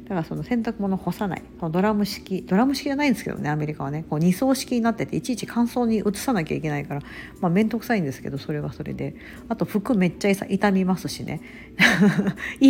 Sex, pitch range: female, 160-235 Hz